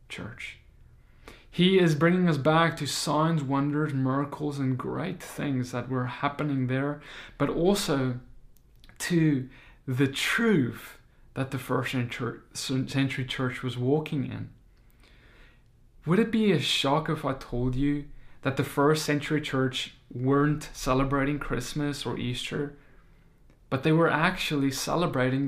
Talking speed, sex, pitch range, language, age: 130 wpm, male, 125-155 Hz, English, 20-39